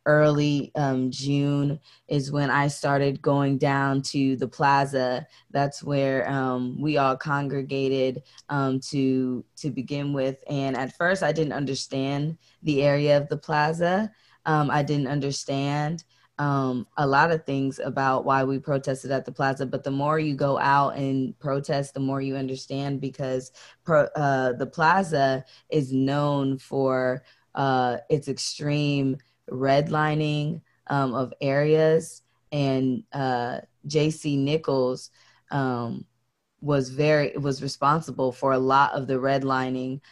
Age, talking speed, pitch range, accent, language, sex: 20-39, 135 wpm, 130-145 Hz, American, English, female